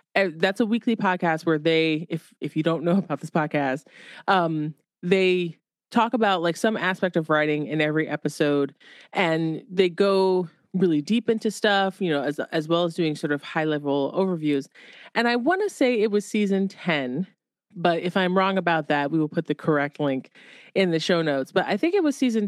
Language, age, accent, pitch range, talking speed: English, 30-49, American, 155-200 Hz, 205 wpm